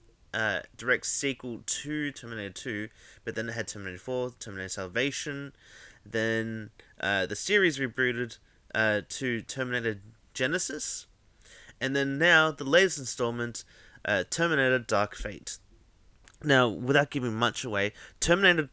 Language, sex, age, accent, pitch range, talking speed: English, male, 30-49, Australian, 105-140 Hz, 125 wpm